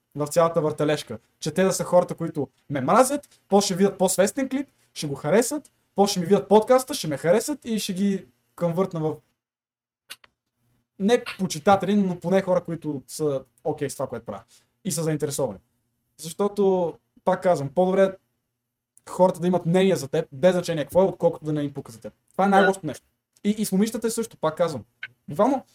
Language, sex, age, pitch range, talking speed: Bulgarian, male, 20-39, 145-205 Hz, 185 wpm